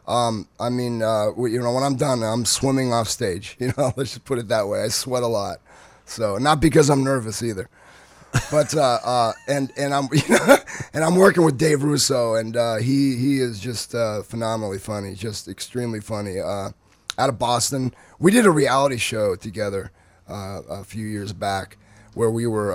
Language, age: English, 30-49